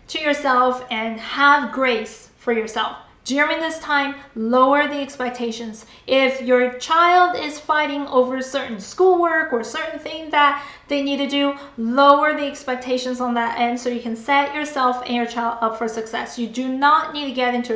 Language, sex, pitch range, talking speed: English, female, 245-290 Hz, 180 wpm